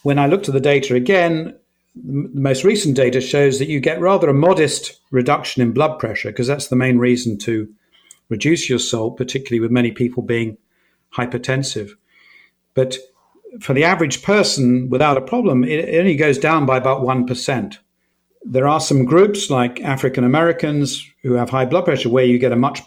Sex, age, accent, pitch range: male, 50-69, British, 125-140 Hz